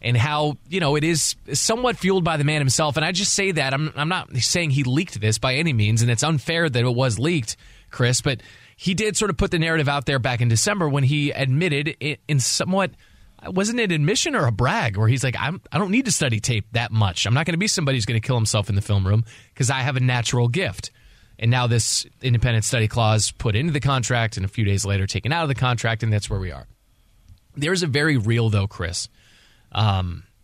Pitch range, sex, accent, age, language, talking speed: 110-140 Hz, male, American, 20-39, English, 245 wpm